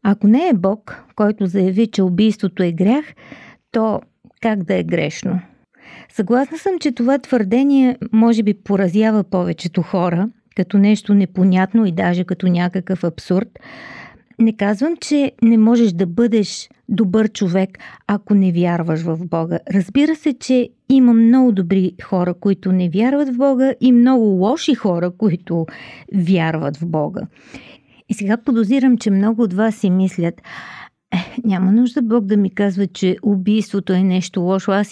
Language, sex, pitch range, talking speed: Bulgarian, female, 190-235 Hz, 155 wpm